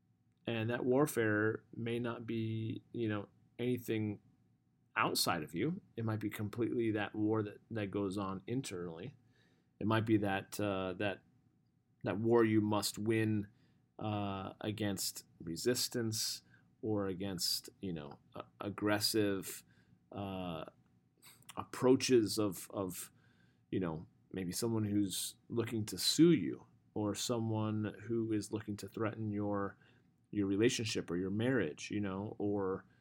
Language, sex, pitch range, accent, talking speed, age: English, male, 100-120 Hz, American, 130 wpm, 30-49